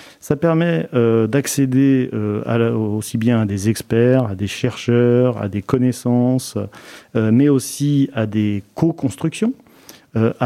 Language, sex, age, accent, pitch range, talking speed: French, male, 40-59, French, 110-135 Hz, 145 wpm